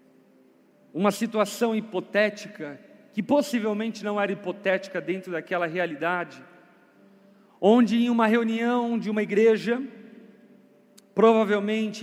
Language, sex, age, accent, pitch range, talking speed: Portuguese, male, 40-59, Brazilian, 205-250 Hz, 95 wpm